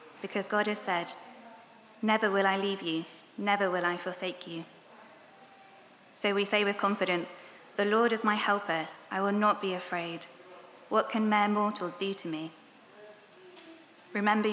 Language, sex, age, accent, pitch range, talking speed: English, female, 20-39, British, 180-210 Hz, 155 wpm